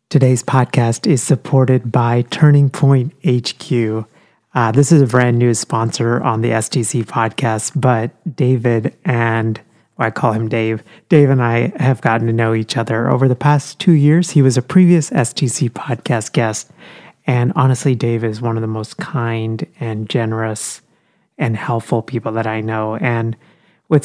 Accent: American